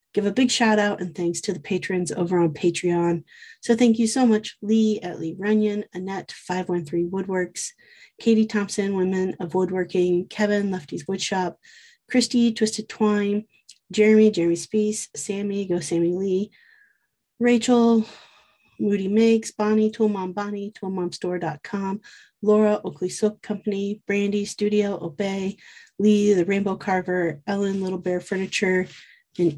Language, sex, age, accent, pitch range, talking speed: English, female, 30-49, American, 180-215 Hz, 140 wpm